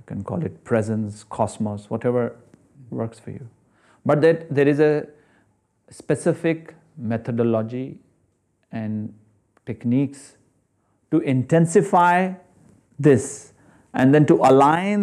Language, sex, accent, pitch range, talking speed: English, male, Indian, 105-135 Hz, 100 wpm